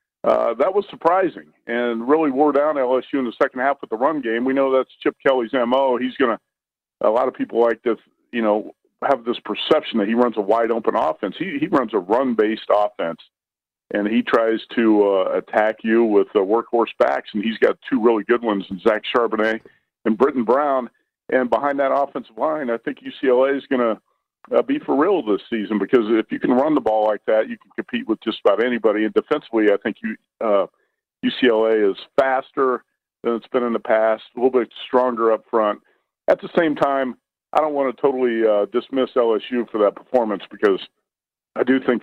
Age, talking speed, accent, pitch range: 50-69, 205 wpm, American, 110-135 Hz